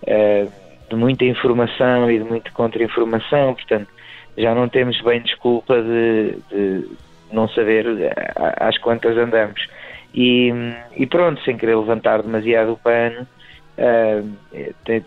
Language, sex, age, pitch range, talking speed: Portuguese, male, 20-39, 110-120 Hz, 120 wpm